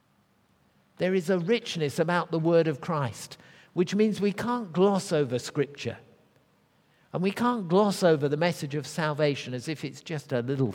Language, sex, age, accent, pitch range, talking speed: English, male, 50-69, British, 110-175 Hz, 175 wpm